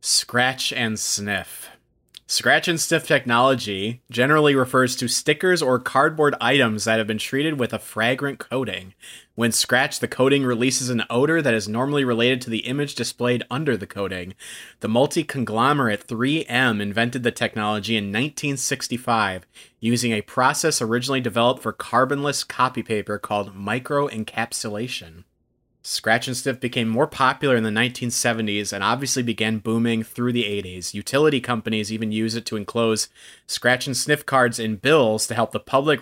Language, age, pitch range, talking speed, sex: English, 30-49, 110-130 Hz, 155 wpm, male